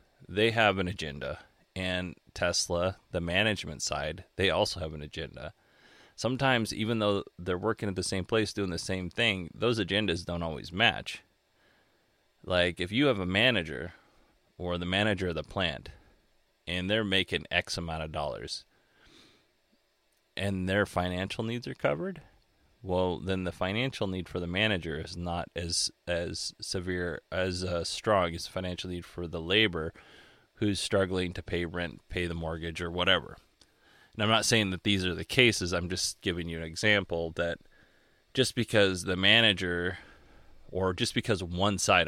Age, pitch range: 30-49, 85-105 Hz